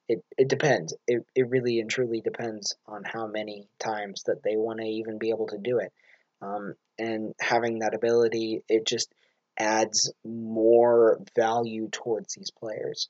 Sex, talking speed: male, 165 wpm